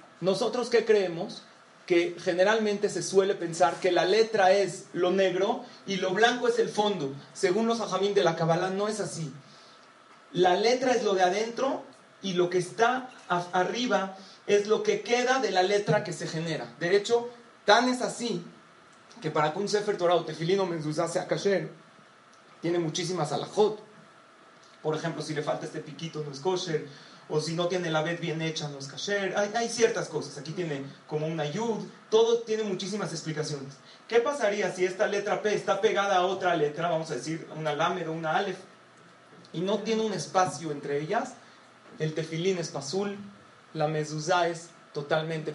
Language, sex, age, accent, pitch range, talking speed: Spanish, male, 40-59, Mexican, 160-205 Hz, 175 wpm